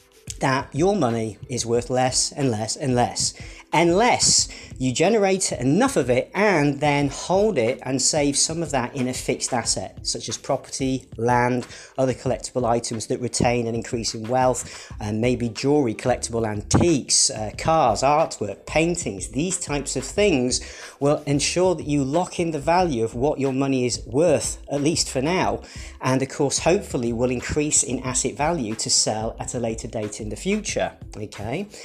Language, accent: English, British